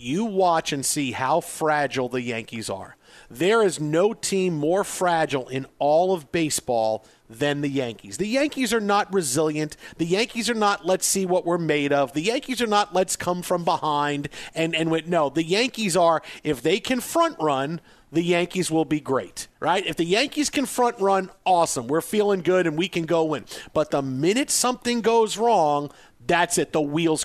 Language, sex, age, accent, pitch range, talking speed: English, male, 40-59, American, 150-200 Hz, 195 wpm